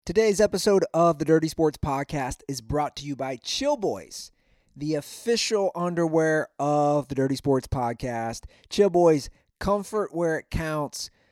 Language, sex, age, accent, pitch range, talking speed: English, male, 30-49, American, 145-190 Hz, 150 wpm